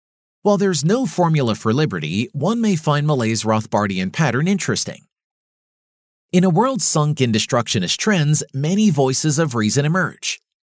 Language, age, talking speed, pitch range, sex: English, 40-59, 140 wpm, 110-165 Hz, male